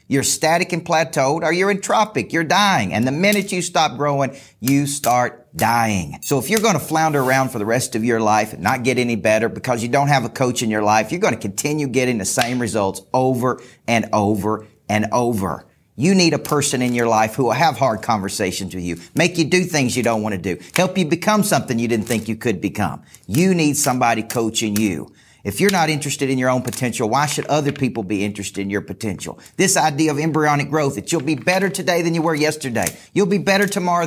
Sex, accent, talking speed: male, American, 230 wpm